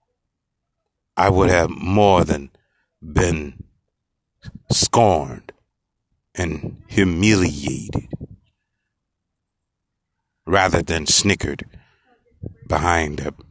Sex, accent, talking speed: male, American, 60 wpm